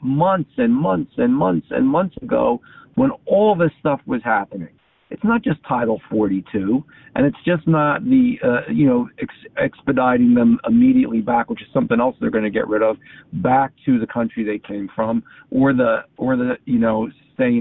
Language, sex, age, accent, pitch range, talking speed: English, male, 50-69, American, 115-180 Hz, 190 wpm